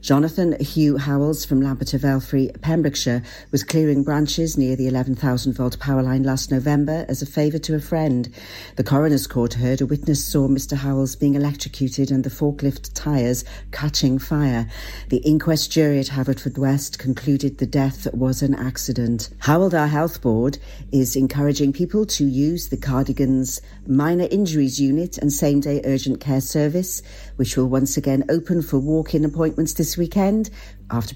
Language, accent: English, British